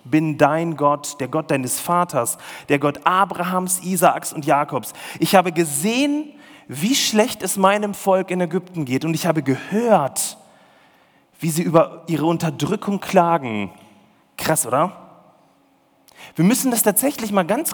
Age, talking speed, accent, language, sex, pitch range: 40-59, 145 wpm, German, German, male, 160-230 Hz